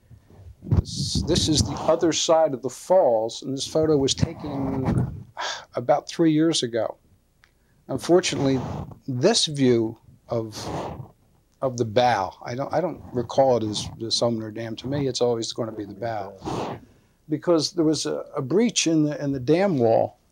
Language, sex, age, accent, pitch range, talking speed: English, male, 60-79, American, 115-150 Hz, 160 wpm